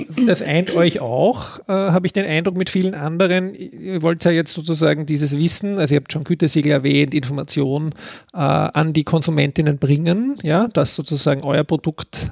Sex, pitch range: male, 150-175 Hz